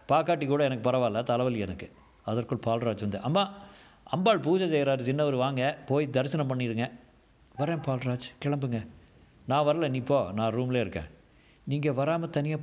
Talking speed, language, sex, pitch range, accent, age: 145 wpm, Tamil, male, 115-150 Hz, native, 50-69